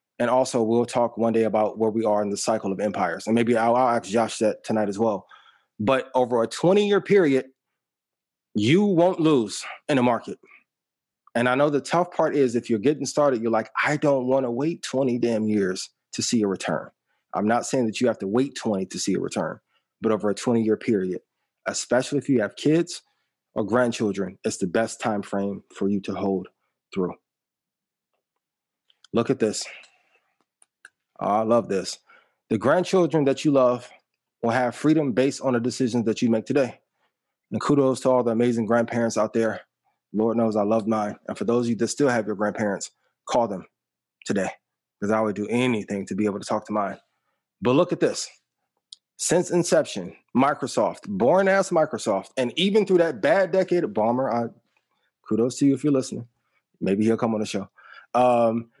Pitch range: 110-140 Hz